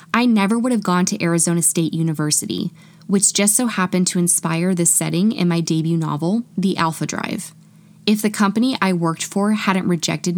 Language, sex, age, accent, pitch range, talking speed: English, female, 20-39, American, 170-210 Hz, 185 wpm